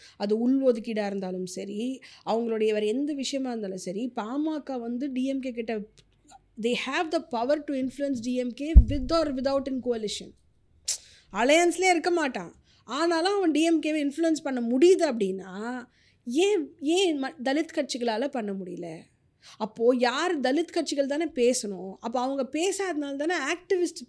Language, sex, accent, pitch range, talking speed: Tamil, female, native, 220-290 Hz, 125 wpm